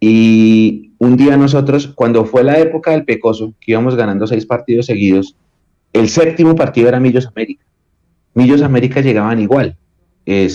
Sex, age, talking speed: male, 30-49, 155 wpm